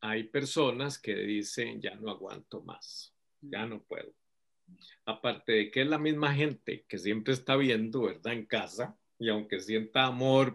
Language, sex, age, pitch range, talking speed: Spanish, male, 50-69, 110-140 Hz, 165 wpm